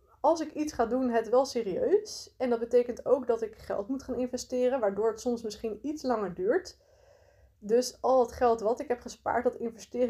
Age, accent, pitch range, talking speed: 20-39, Dutch, 215-255 Hz, 210 wpm